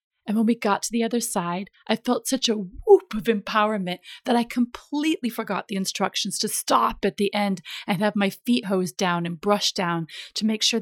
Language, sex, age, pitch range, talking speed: English, female, 30-49, 185-225 Hz, 210 wpm